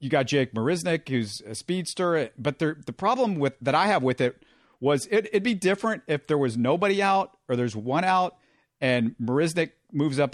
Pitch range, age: 125-160 Hz, 50-69